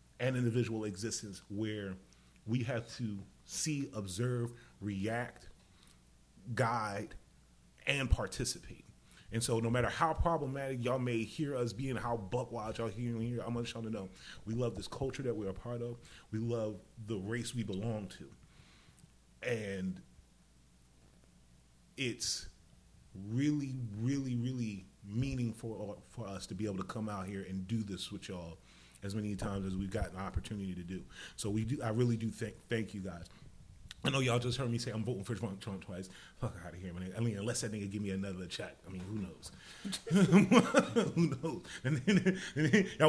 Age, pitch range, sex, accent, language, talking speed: 30-49, 95-125 Hz, male, American, English, 175 wpm